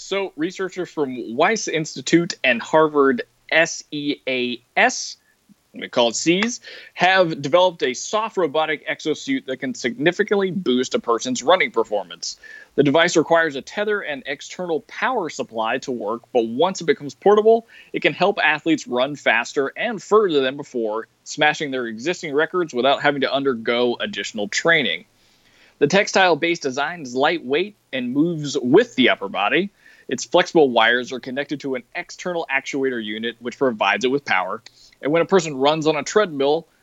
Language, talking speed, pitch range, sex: English, 155 wpm, 135-190 Hz, male